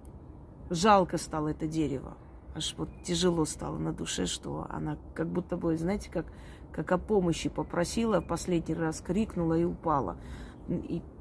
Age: 30-49